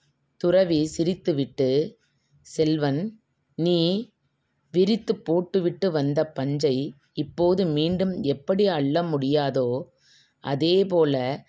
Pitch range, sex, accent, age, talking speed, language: 140-175 Hz, female, Indian, 30-49, 75 wpm, English